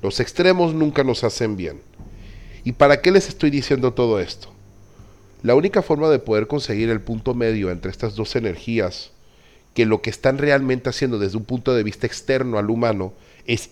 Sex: male